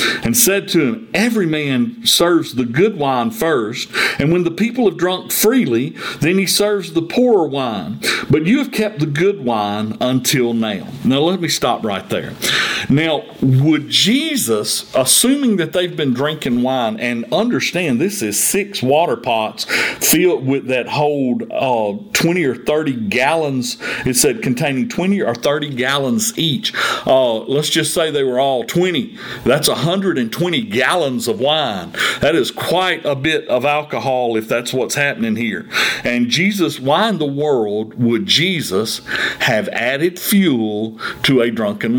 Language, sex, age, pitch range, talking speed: English, male, 50-69, 130-190 Hz, 160 wpm